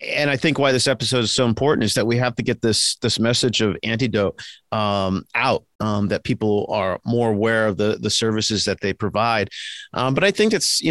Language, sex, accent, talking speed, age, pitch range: English, male, American, 225 wpm, 40-59, 105-125 Hz